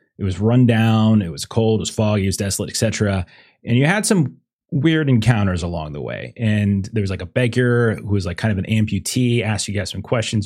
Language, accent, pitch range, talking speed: English, American, 100-125 Hz, 235 wpm